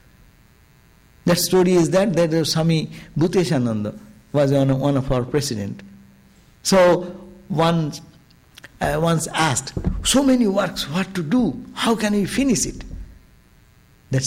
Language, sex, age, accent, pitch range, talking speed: English, male, 60-79, Indian, 130-195 Hz, 120 wpm